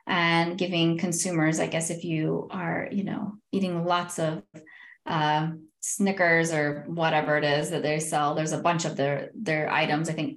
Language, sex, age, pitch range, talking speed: English, female, 20-39, 160-195 Hz, 180 wpm